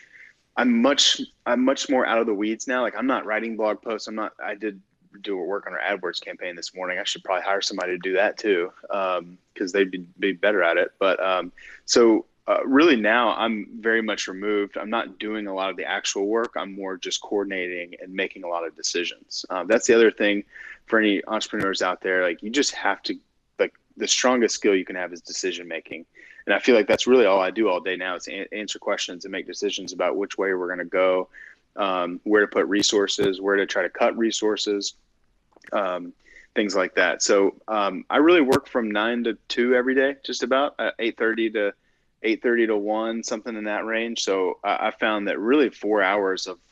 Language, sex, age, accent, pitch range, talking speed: English, male, 20-39, American, 95-120 Hz, 215 wpm